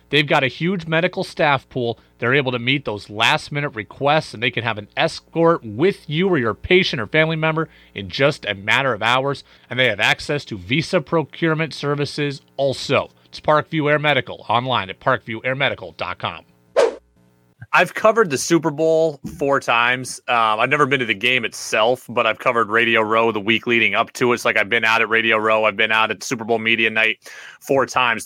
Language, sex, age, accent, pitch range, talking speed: English, male, 30-49, American, 115-150 Hz, 200 wpm